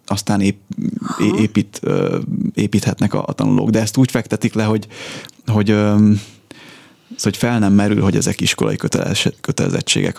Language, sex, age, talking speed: Hungarian, male, 30-49, 120 wpm